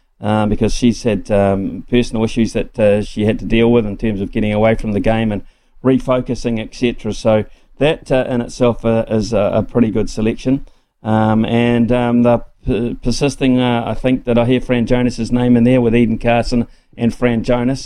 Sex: male